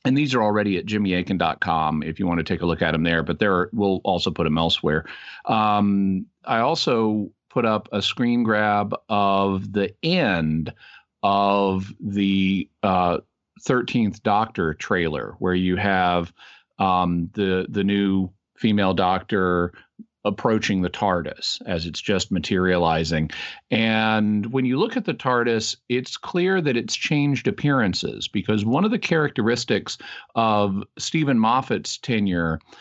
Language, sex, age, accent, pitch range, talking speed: English, male, 40-59, American, 90-115 Hz, 145 wpm